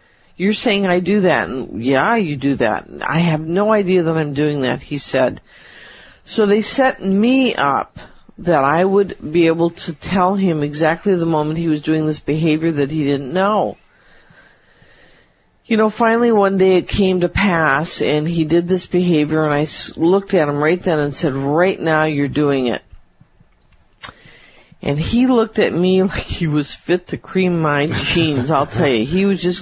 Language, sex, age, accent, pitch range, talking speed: English, female, 50-69, American, 160-205 Hz, 185 wpm